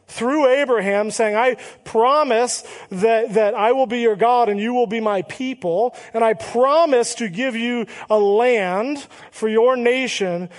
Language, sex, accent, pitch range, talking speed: English, male, American, 195-245 Hz, 165 wpm